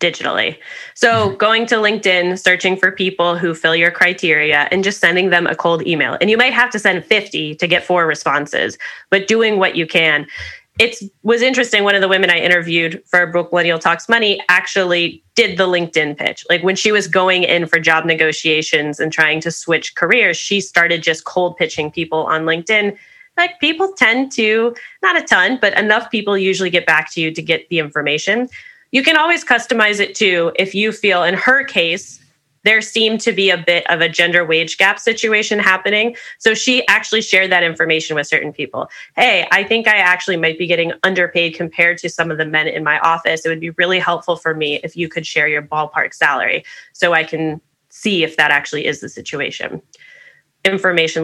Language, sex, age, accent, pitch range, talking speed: English, female, 20-39, American, 165-215 Hz, 200 wpm